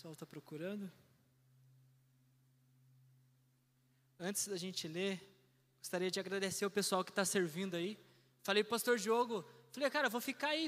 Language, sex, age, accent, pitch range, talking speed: Portuguese, male, 20-39, Brazilian, 195-255 Hz, 145 wpm